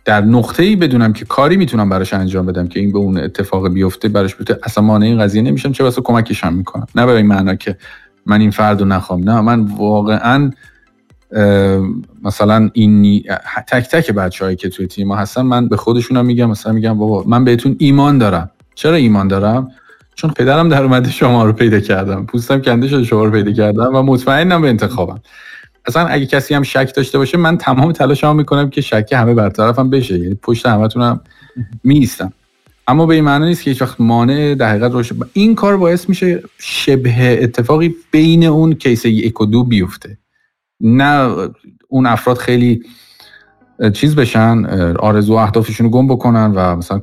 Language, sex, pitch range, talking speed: Persian, male, 105-135 Hz, 175 wpm